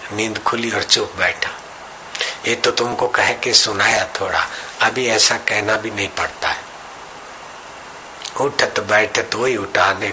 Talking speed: 155 wpm